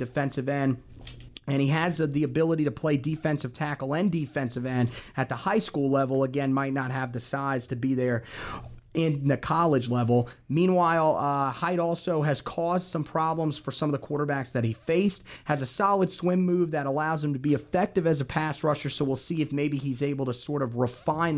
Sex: male